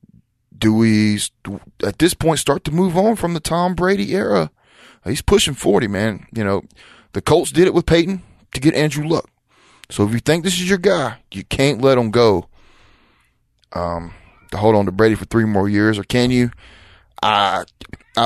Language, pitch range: English, 105-140 Hz